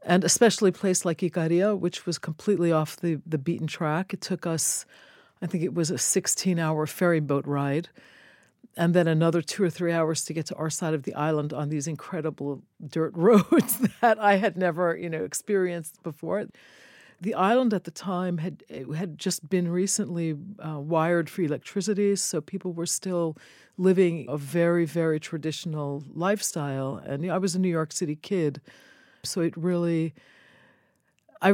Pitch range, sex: 160-195 Hz, female